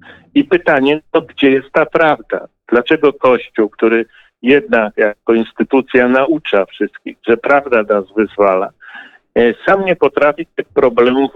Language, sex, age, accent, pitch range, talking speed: Polish, male, 50-69, native, 110-135 Hz, 125 wpm